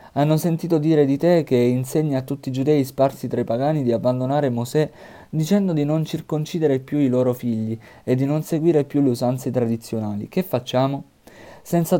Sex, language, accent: male, Italian, native